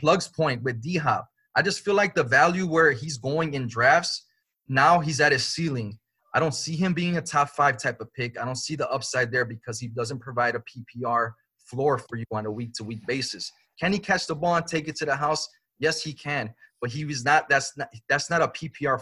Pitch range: 130-160 Hz